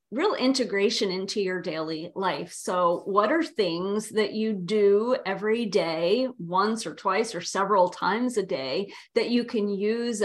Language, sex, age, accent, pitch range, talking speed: English, female, 30-49, American, 185-245 Hz, 160 wpm